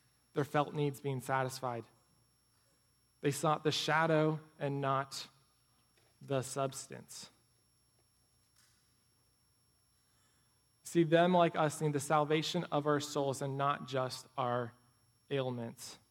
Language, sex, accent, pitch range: English, male, American, 125-165 Hz